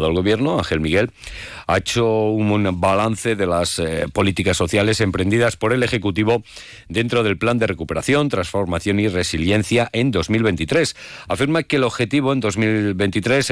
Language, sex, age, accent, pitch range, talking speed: Spanish, male, 40-59, Spanish, 85-110 Hz, 145 wpm